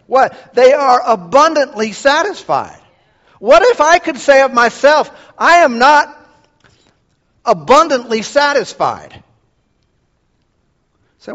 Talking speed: 95 wpm